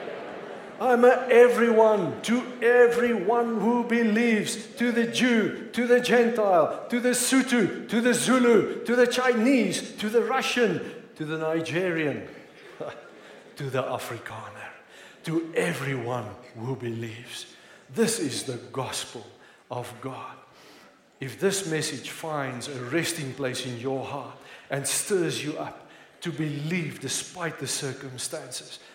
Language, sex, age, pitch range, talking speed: English, male, 50-69, 130-205 Hz, 125 wpm